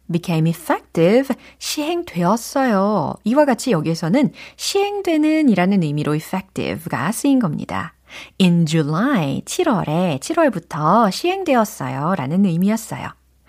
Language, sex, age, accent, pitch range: Korean, female, 40-59, native, 160-250 Hz